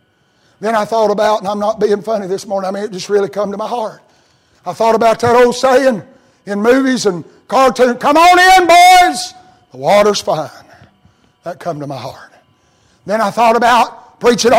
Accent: American